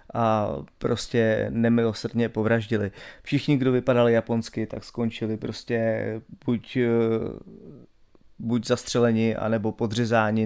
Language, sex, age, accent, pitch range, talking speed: Czech, male, 30-49, native, 110-125 Hz, 90 wpm